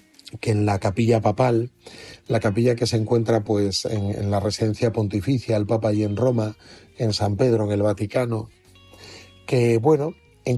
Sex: male